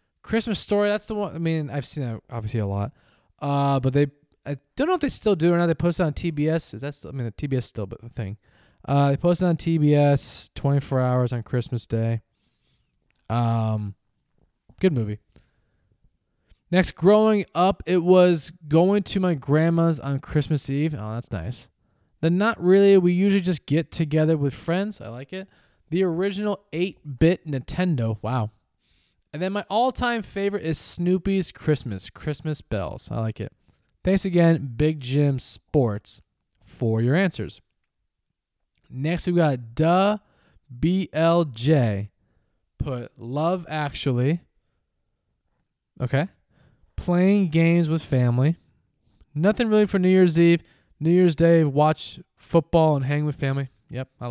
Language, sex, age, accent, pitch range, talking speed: English, male, 20-39, American, 120-175 Hz, 155 wpm